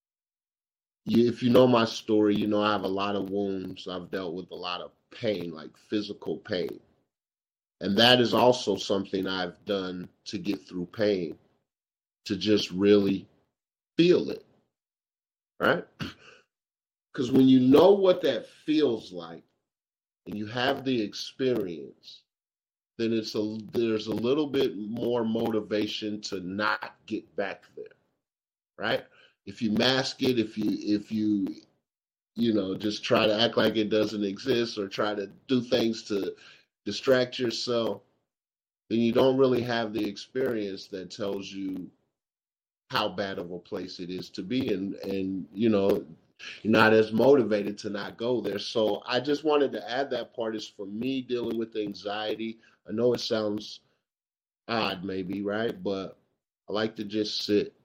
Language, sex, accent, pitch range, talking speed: English, male, American, 100-120 Hz, 160 wpm